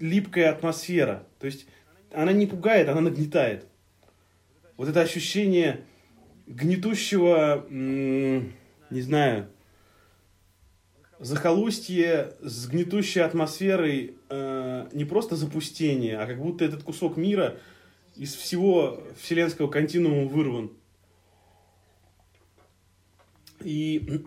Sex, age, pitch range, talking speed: male, 20-39, 120-170 Hz, 90 wpm